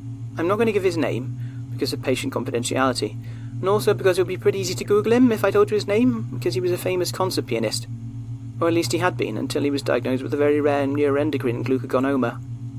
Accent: British